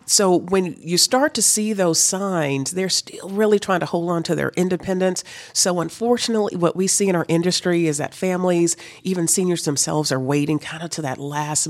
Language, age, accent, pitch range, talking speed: English, 40-59, American, 150-210 Hz, 200 wpm